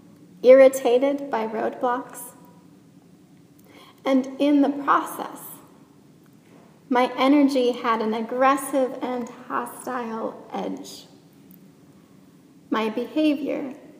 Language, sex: English, female